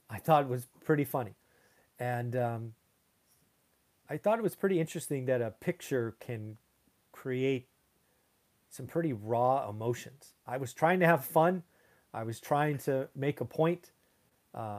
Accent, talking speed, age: American, 150 wpm, 40-59